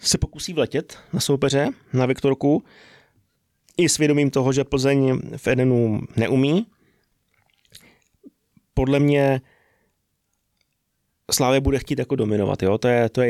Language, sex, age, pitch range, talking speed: Czech, male, 20-39, 115-130 Hz, 120 wpm